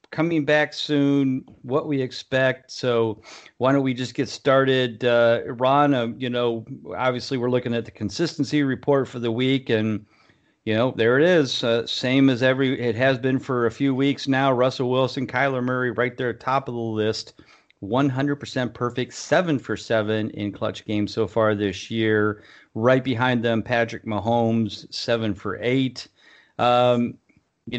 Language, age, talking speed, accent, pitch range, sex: English, 40-59, 175 wpm, American, 110-130 Hz, male